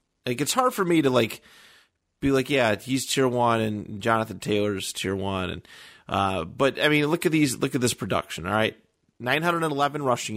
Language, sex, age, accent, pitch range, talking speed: English, male, 30-49, American, 105-140 Hz, 215 wpm